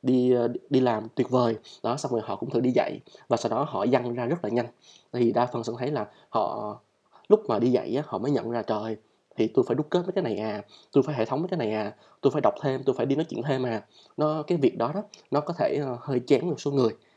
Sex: male